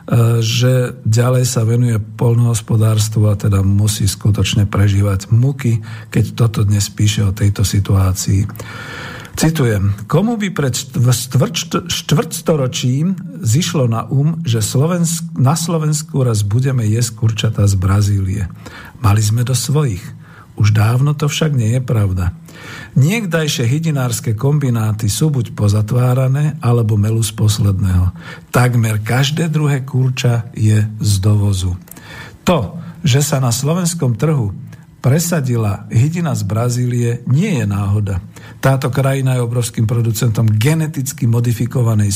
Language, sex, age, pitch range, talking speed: Slovak, male, 50-69, 110-140 Hz, 120 wpm